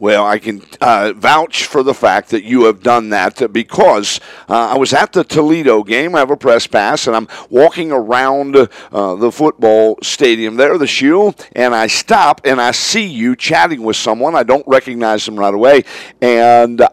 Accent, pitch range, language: American, 125-165 Hz, English